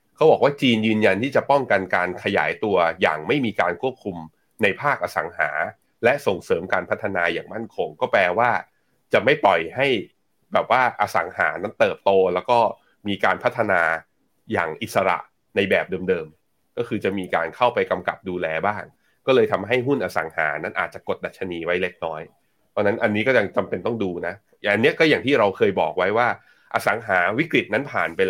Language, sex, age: Thai, male, 30-49